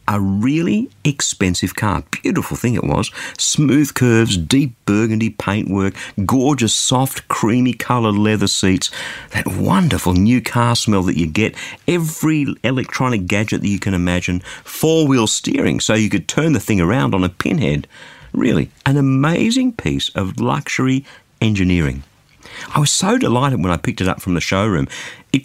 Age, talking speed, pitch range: 50-69, 155 wpm, 95-135 Hz